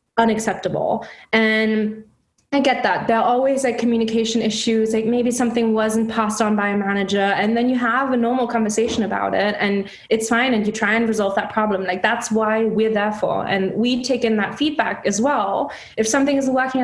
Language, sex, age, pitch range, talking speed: English, female, 20-39, 215-255 Hz, 205 wpm